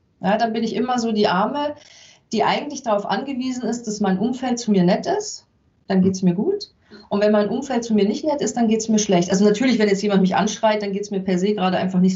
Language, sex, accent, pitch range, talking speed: German, female, German, 195-230 Hz, 270 wpm